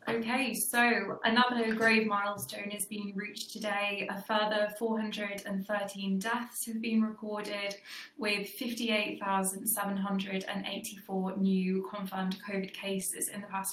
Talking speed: 110 wpm